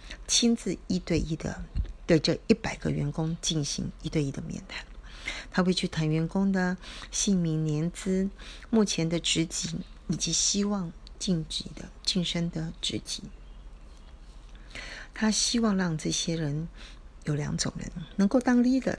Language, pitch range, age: Chinese, 160-200 Hz, 40-59